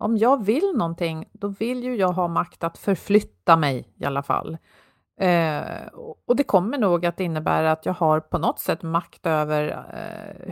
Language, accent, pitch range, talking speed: Swedish, native, 170-215 Hz, 185 wpm